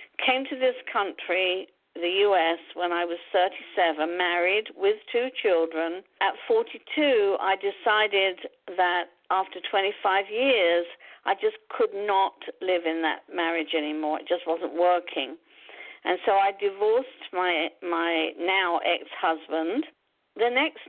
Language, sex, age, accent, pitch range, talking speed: English, female, 50-69, British, 175-260 Hz, 130 wpm